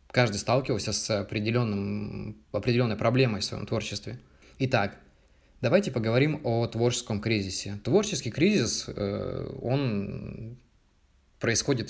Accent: native